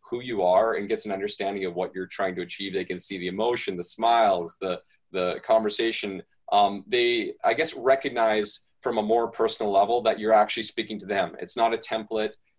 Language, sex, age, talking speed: English, male, 20-39, 200 wpm